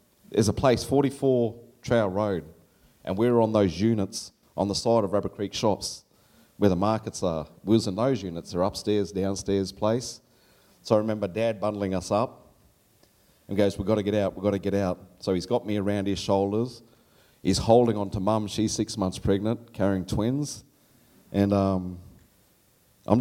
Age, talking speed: 30-49, 185 wpm